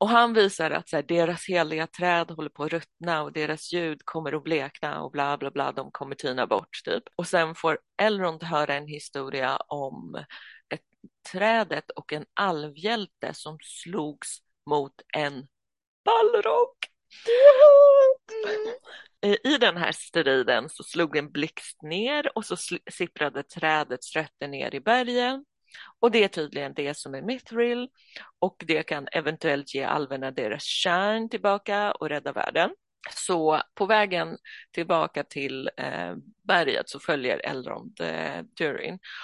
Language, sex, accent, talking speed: Swedish, female, native, 140 wpm